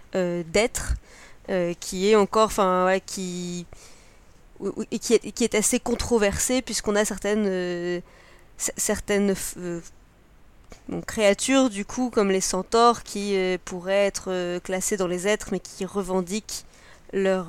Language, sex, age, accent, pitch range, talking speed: French, female, 20-39, French, 185-215 Hz, 150 wpm